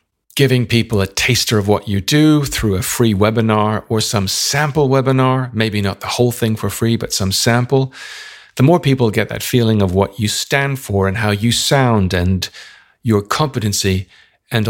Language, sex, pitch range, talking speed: English, male, 105-130 Hz, 185 wpm